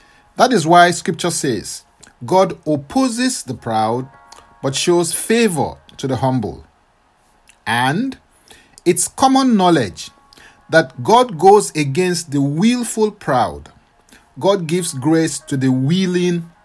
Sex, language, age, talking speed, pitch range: male, English, 50-69, 115 wpm, 135-205 Hz